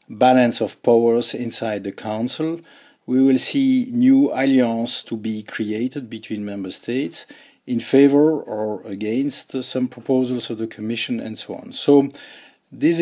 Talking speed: 145 wpm